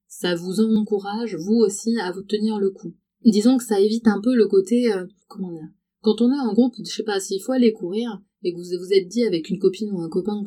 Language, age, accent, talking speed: French, 30-49, French, 265 wpm